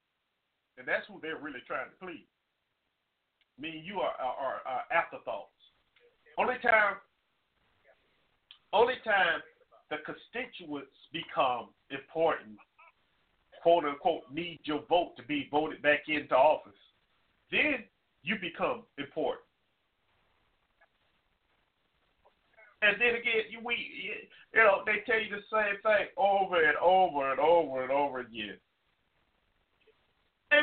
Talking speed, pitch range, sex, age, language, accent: 115 wpm, 165-245 Hz, male, 50-69, English, American